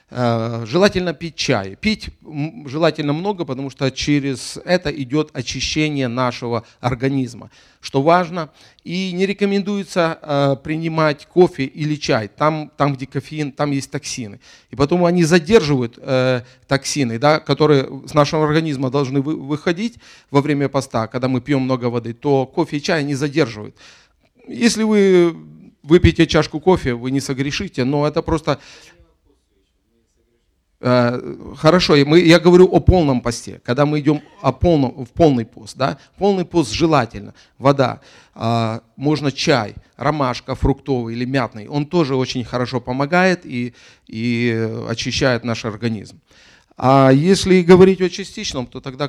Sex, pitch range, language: male, 120-155 Hz, English